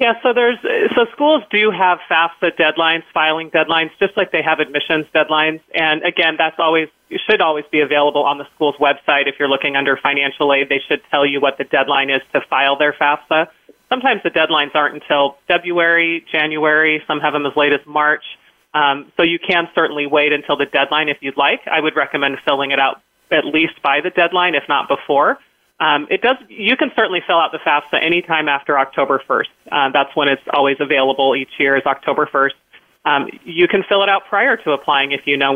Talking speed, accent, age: 210 wpm, American, 30-49